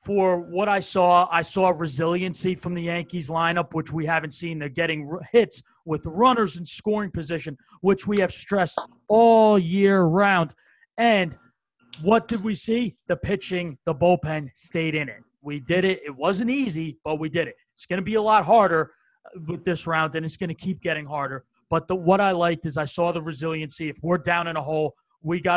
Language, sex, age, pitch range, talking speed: English, male, 30-49, 160-185 Hz, 200 wpm